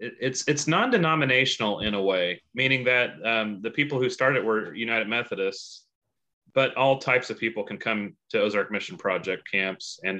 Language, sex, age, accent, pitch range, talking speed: English, male, 30-49, American, 105-130 Hz, 170 wpm